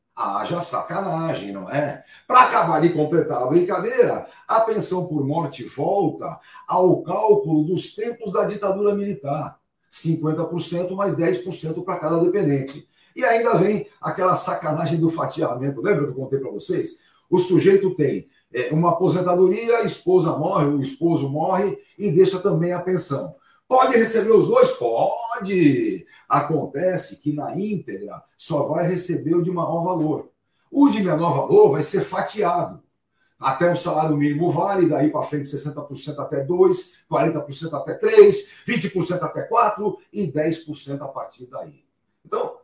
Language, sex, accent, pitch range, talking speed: Portuguese, male, Brazilian, 155-205 Hz, 145 wpm